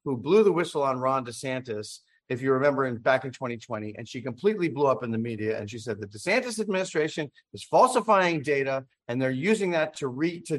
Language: English